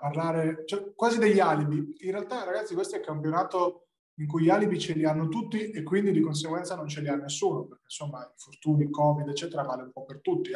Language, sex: Italian, male